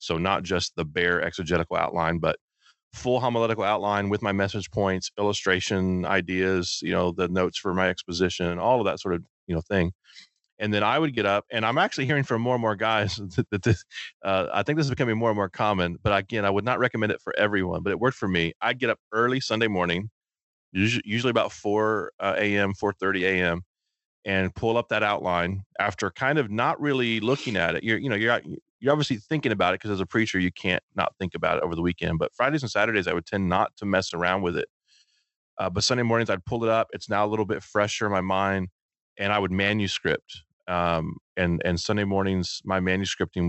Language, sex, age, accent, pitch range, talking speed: English, male, 30-49, American, 90-110 Hz, 225 wpm